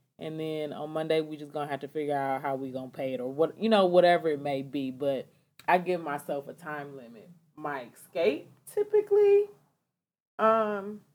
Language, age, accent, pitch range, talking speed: English, 20-39, American, 140-170 Hz, 200 wpm